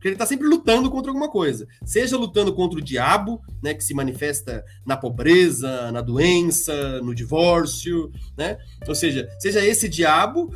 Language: Portuguese